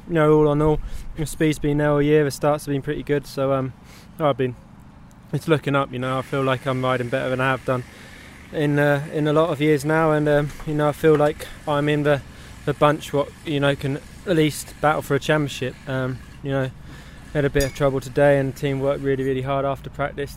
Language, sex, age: English, male, 20-39